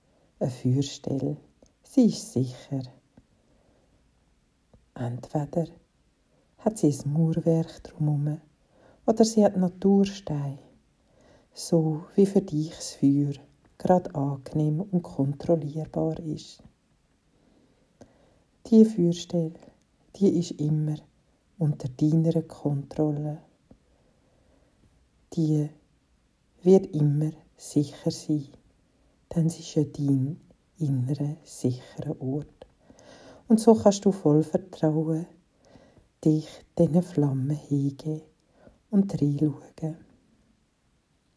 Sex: female